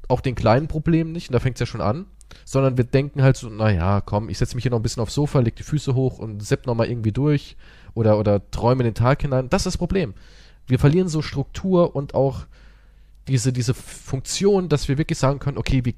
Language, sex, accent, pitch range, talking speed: German, male, German, 115-150 Hz, 240 wpm